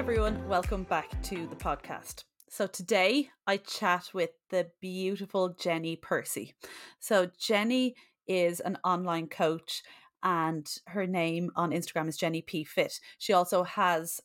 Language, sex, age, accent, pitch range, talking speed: English, female, 30-49, Irish, 165-190 Hz, 140 wpm